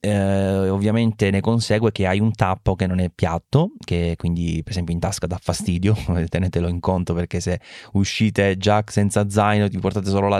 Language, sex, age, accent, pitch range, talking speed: English, male, 20-39, Italian, 85-100 Hz, 190 wpm